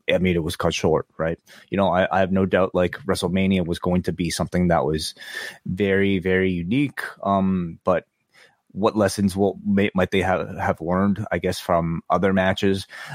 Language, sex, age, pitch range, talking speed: English, male, 20-39, 85-105 Hz, 190 wpm